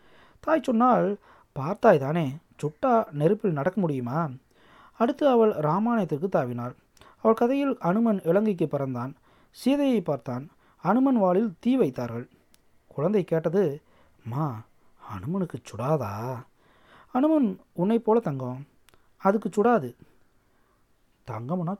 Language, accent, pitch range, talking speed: Tamil, native, 150-215 Hz, 95 wpm